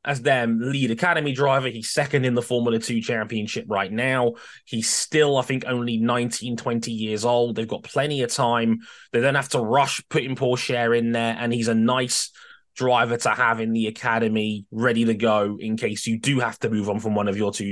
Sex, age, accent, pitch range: male, 20-39, British, 115-145 Hz